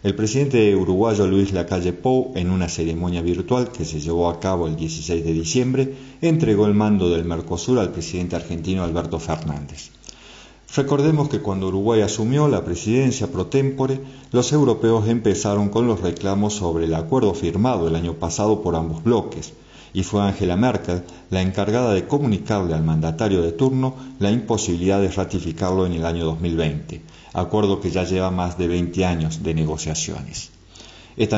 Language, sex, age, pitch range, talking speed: Spanish, male, 40-59, 85-110 Hz, 165 wpm